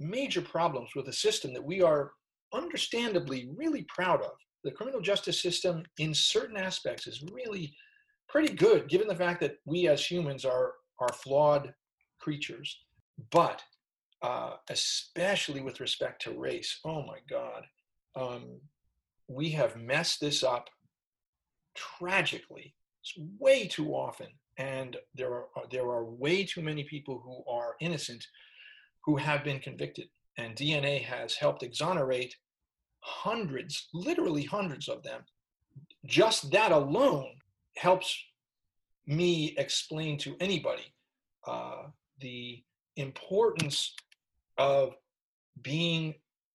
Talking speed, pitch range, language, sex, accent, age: 120 wpm, 130-175 Hz, English, male, American, 40-59